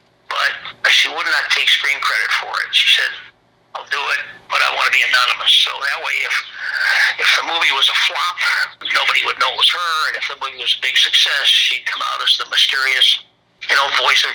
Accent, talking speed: American, 225 wpm